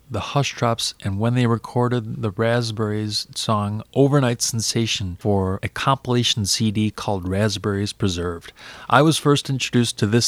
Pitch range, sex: 100-120 Hz, male